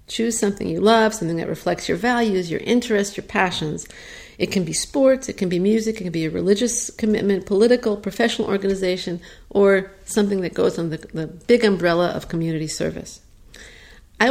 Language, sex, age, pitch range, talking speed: English, female, 50-69, 175-215 Hz, 180 wpm